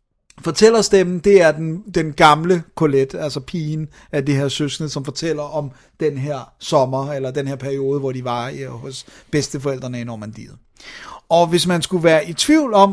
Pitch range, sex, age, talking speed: 150-180 Hz, male, 30-49, 185 wpm